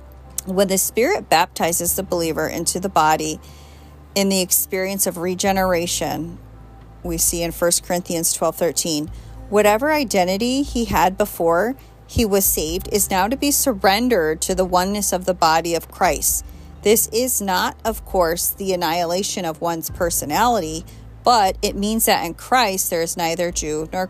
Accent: American